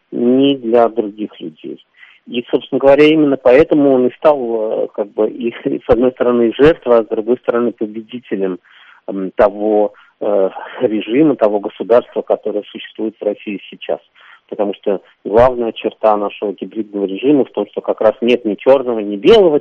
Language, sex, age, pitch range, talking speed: Russian, male, 40-59, 100-125 Hz, 155 wpm